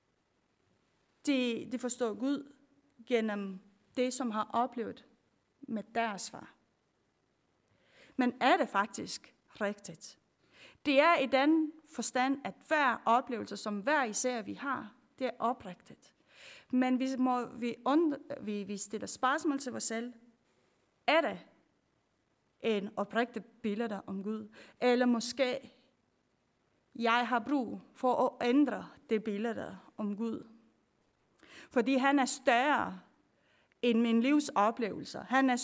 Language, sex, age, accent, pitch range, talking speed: Danish, female, 30-49, native, 220-260 Hz, 125 wpm